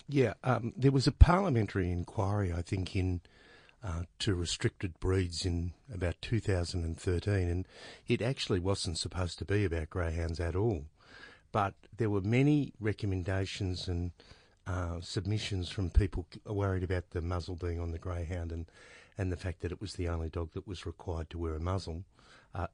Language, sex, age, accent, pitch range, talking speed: English, male, 50-69, Australian, 85-100 Hz, 170 wpm